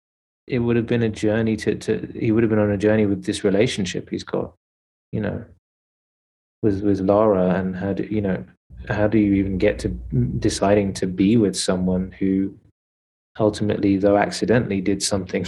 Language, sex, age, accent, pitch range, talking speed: English, male, 20-39, British, 95-105 Hz, 180 wpm